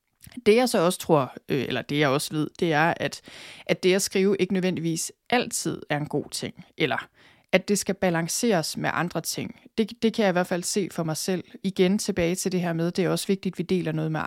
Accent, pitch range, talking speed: native, 160-205 Hz, 250 wpm